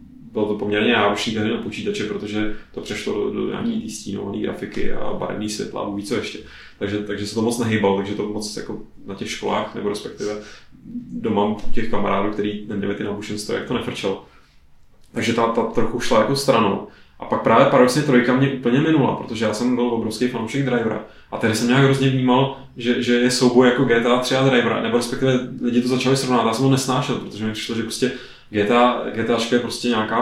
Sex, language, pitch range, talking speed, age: male, Czech, 105-125 Hz, 200 wpm, 20-39